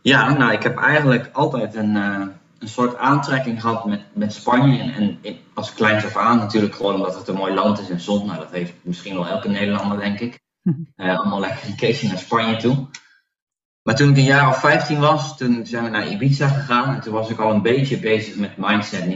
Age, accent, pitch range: 20-39, Dutch, 100-125 Hz